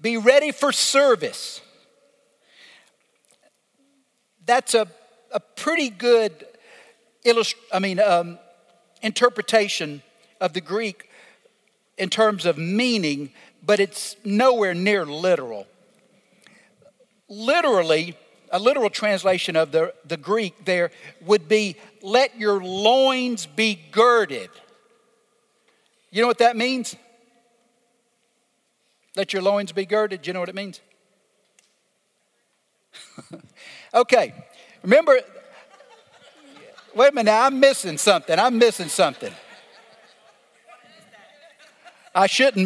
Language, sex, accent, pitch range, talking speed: English, male, American, 195-250 Hz, 100 wpm